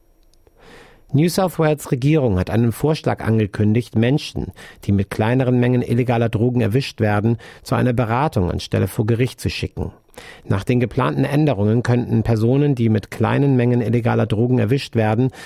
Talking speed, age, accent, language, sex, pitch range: 150 wpm, 50-69, German, German, male, 105-125 Hz